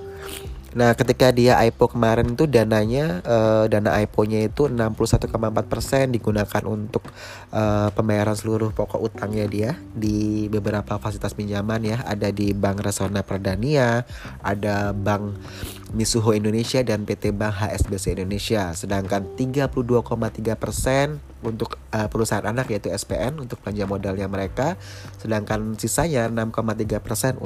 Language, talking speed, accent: Indonesian, 120 wpm, native